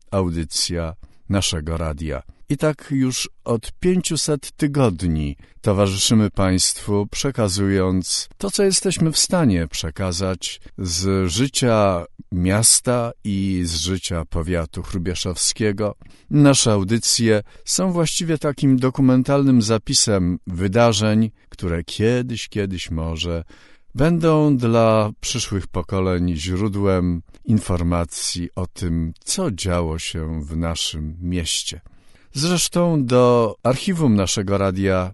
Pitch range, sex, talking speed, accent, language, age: 90-120 Hz, male, 95 wpm, native, Polish, 50-69